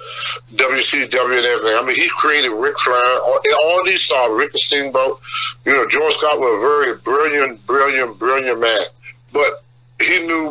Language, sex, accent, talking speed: English, male, American, 175 wpm